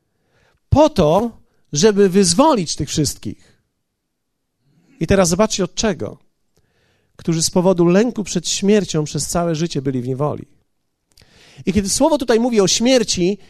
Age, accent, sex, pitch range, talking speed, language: 50-69, native, male, 145-215 Hz, 135 wpm, Polish